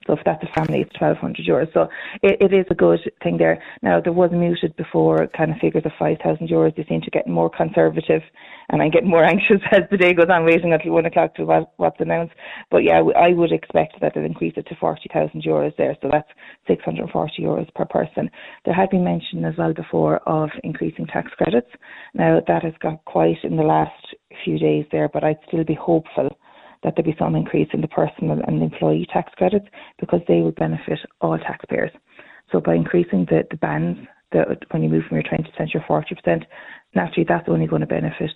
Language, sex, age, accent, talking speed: English, female, 20-39, Irish, 215 wpm